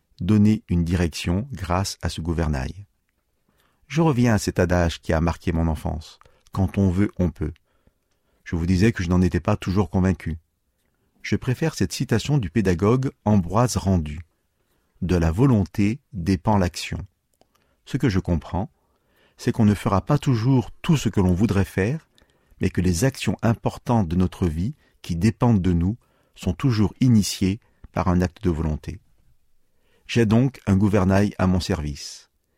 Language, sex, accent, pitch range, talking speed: French, male, French, 90-110 Hz, 160 wpm